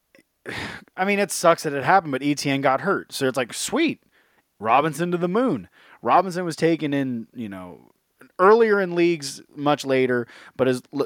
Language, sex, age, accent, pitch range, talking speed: English, male, 30-49, American, 115-140 Hz, 180 wpm